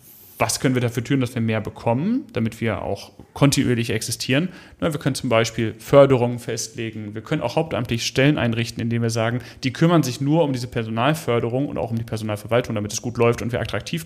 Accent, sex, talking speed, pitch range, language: German, male, 205 wpm, 115-150 Hz, German